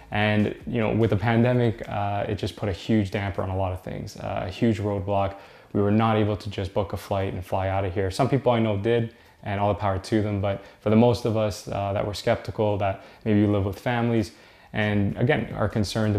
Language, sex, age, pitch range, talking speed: English, male, 20-39, 100-115 Hz, 245 wpm